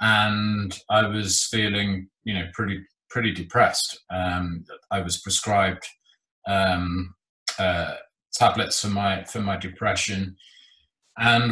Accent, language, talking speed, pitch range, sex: British, English, 115 wpm, 95-110 Hz, male